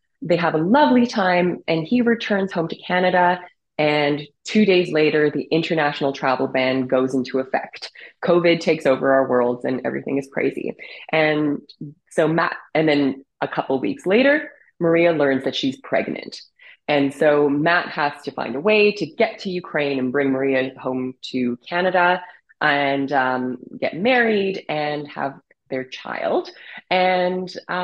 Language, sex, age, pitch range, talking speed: English, female, 20-39, 135-180 Hz, 155 wpm